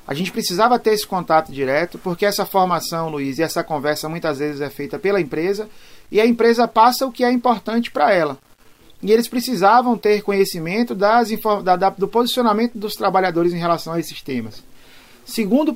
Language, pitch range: Portuguese, 155-225 Hz